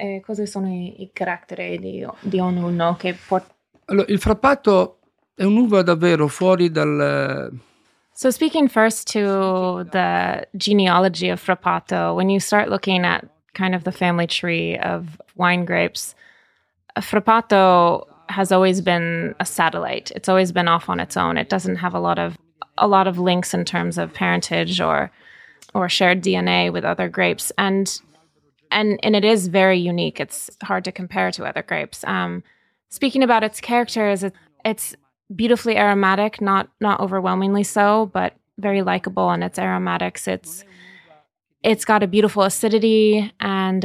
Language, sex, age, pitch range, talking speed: English, female, 20-39, 170-205 Hz, 145 wpm